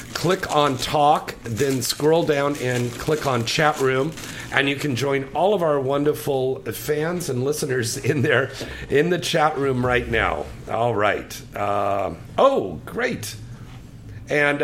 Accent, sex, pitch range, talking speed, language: American, male, 105-135 Hz, 150 wpm, English